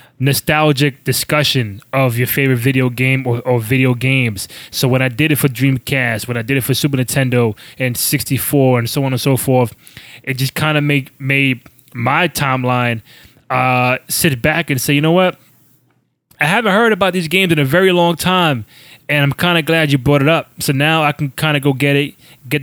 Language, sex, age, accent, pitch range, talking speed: English, male, 20-39, American, 125-145 Hz, 200 wpm